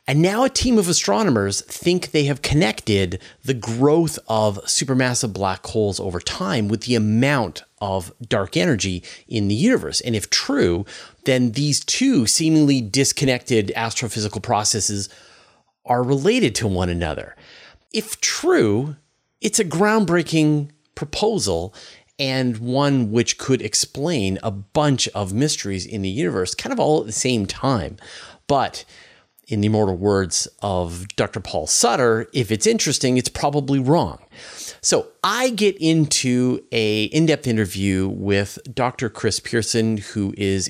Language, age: English, 30-49